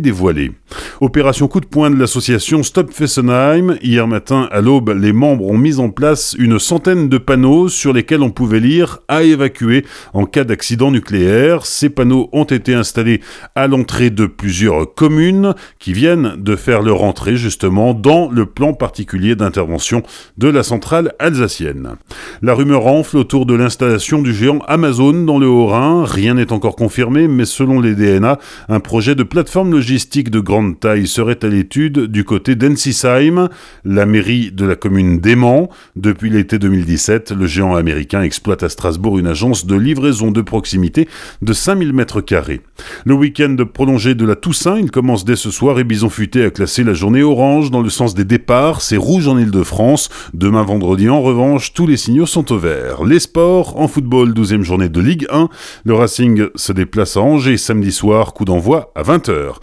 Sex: male